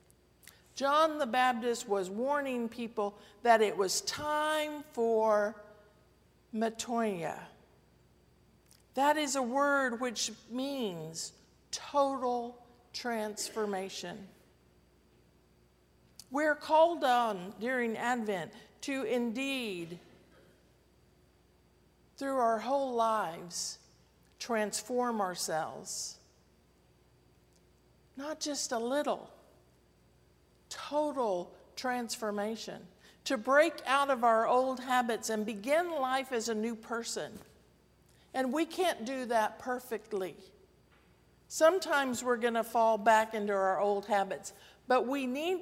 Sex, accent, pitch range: female, American, 185-255 Hz